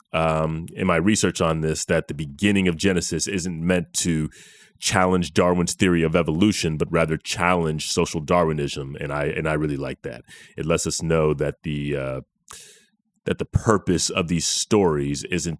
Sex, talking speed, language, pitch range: male, 175 wpm, English, 80-95 Hz